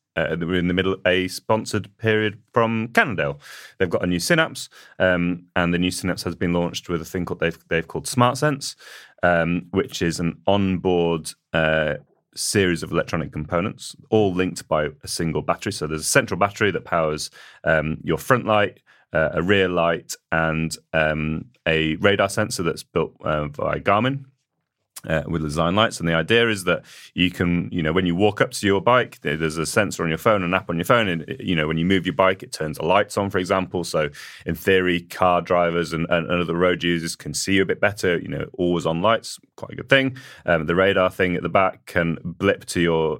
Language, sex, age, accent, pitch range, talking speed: English, male, 30-49, British, 80-100 Hz, 215 wpm